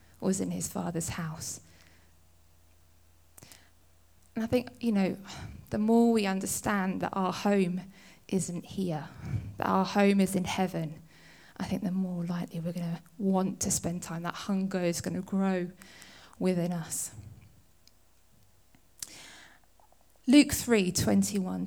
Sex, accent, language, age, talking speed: female, British, English, 20-39, 135 wpm